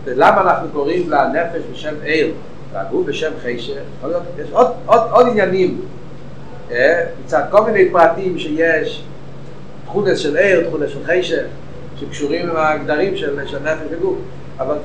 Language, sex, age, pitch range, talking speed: Hebrew, male, 60-79, 145-215 Hz, 130 wpm